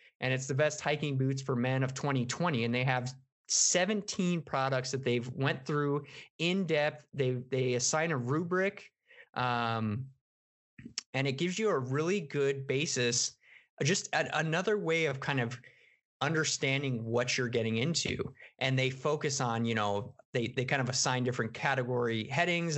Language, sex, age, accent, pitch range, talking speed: English, male, 20-39, American, 125-150 Hz, 160 wpm